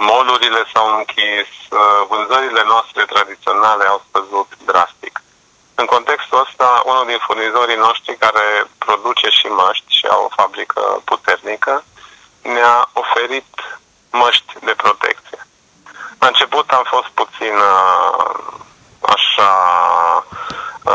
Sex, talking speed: male, 105 wpm